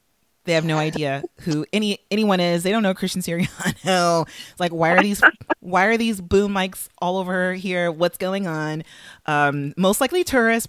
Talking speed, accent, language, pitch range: 180 wpm, American, English, 155-195 Hz